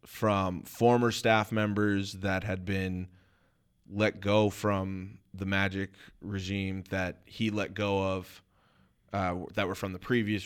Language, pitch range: English, 95-105 Hz